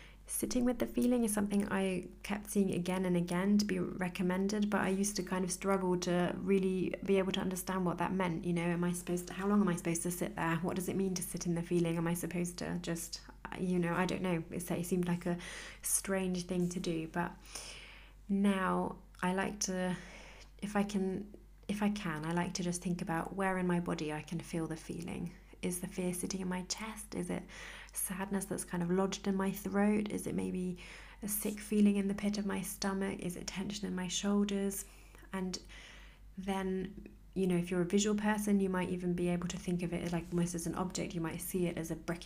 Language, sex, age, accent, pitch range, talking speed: English, female, 30-49, British, 170-195 Hz, 230 wpm